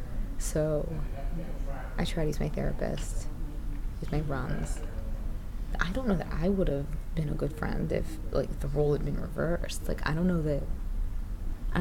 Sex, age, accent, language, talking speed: female, 20-39, American, English, 175 wpm